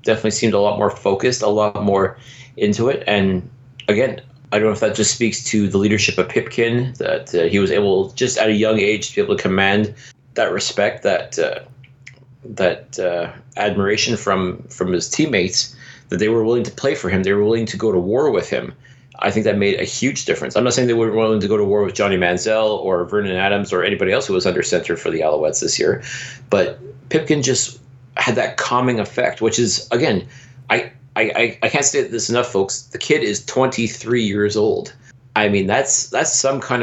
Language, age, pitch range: English, 30-49, 105-130 Hz